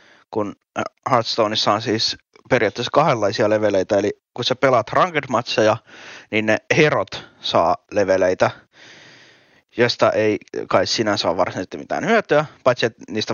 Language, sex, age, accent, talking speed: Finnish, male, 20-39, native, 130 wpm